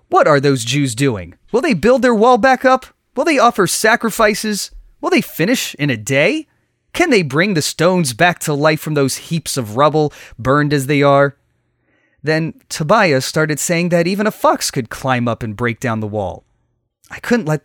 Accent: American